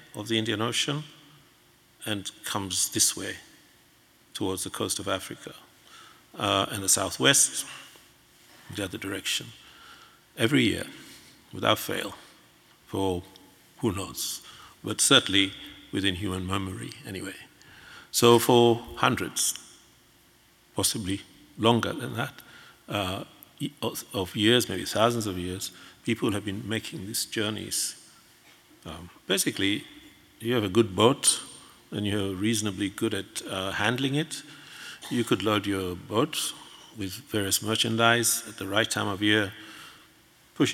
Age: 50-69